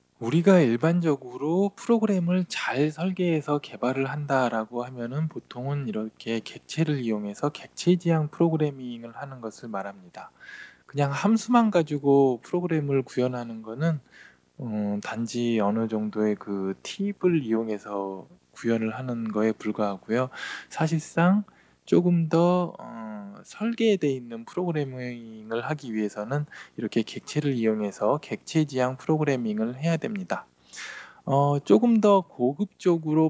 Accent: native